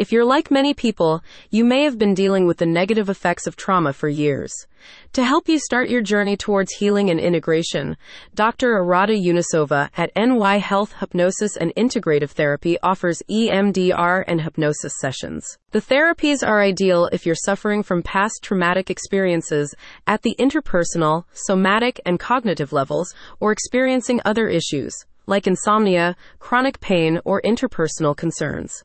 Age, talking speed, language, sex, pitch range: 30-49, 150 wpm, English, female, 170-230 Hz